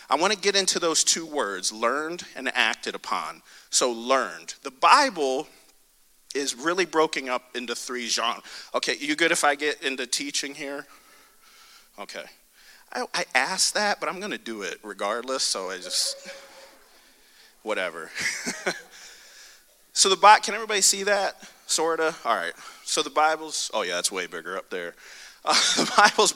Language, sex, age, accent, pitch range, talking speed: English, male, 40-59, American, 155-240 Hz, 160 wpm